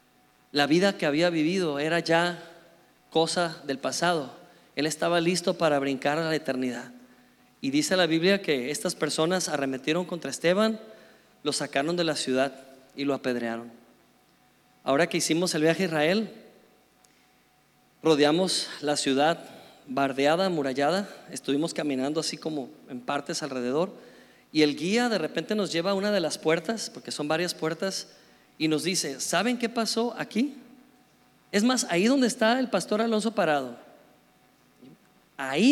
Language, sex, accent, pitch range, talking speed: Spanish, male, Mexican, 155-230 Hz, 150 wpm